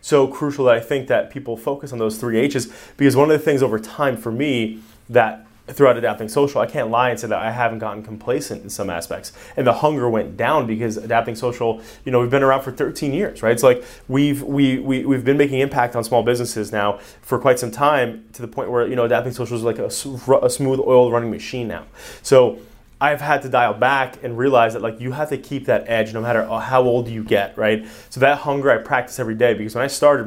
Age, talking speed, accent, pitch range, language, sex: 20-39, 245 wpm, American, 115-135 Hz, English, male